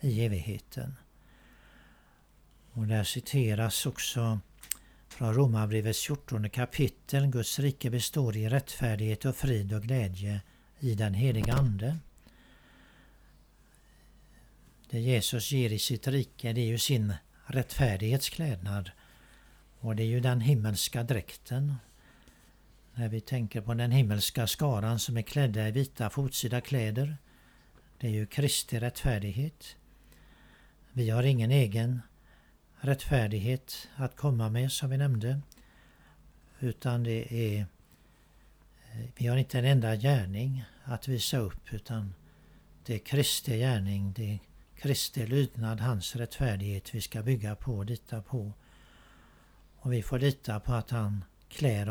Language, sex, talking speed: Swedish, male, 125 wpm